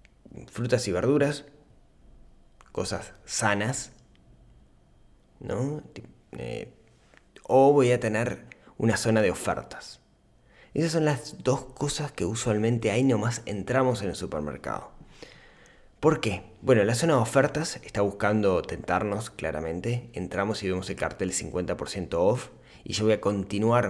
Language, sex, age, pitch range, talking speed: Spanish, male, 20-39, 100-130 Hz, 125 wpm